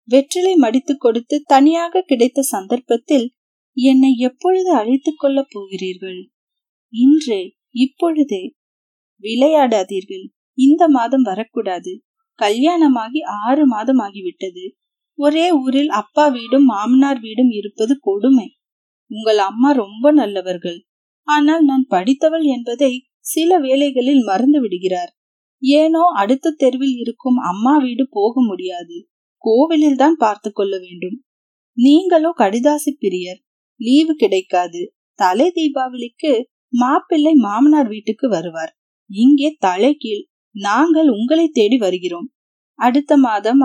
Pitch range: 215-295 Hz